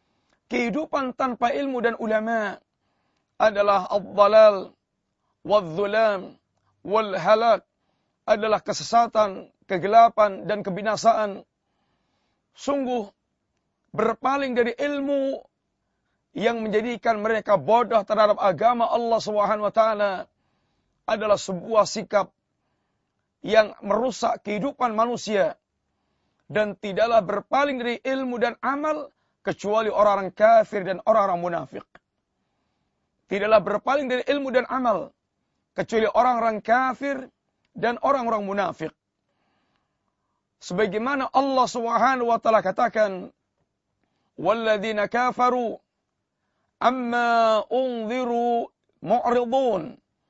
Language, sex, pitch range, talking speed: Indonesian, male, 210-245 Hz, 80 wpm